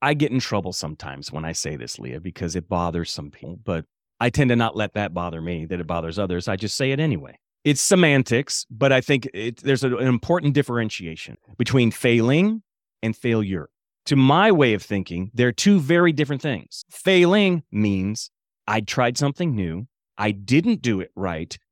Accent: American